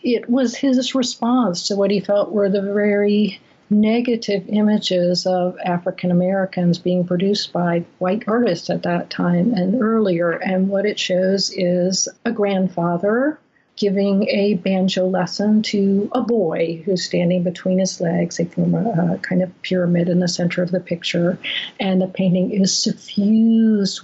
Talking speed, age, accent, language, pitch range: 150 wpm, 50-69, American, English, 180-210 Hz